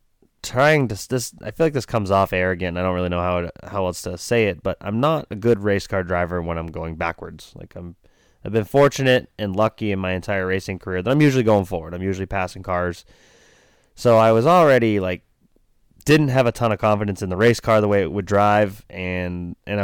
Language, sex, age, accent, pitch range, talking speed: English, male, 20-39, American, 90-110 Hz, 230 wpm